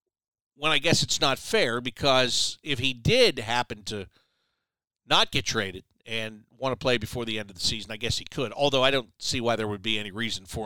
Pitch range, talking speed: 110-135 Hz, 225 wpm